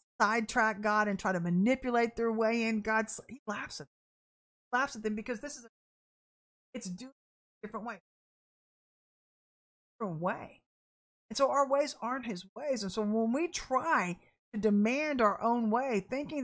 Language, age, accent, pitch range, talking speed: English, 50-69, American, 205-265 Hz, 170 wpm